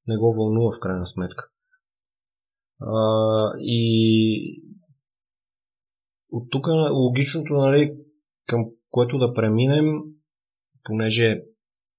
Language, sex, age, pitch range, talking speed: Bulgarian, male, 20-39, 100-145 Hz, 90 wpm